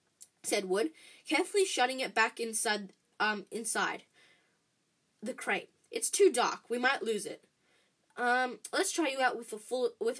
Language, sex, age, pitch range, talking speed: English, female, 10-29, 210-320 Hz, 160 wpm